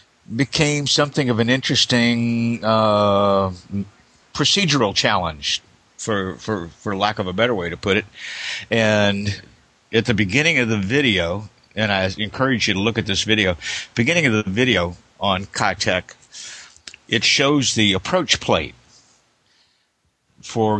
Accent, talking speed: American, 135 wpm